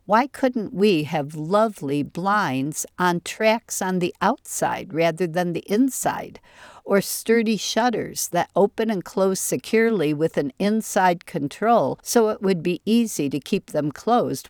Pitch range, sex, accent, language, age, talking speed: 155-205 Hz, female, American, English, 60-79, 150 wpm